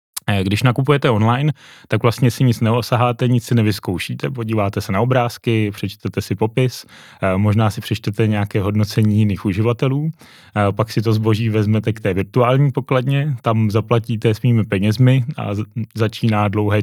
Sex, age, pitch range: male, 20-39, 100-115 Hz